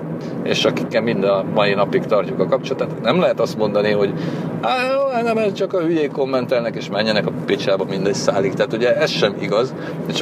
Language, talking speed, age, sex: Hungarian, 180 wpm, 40-59, male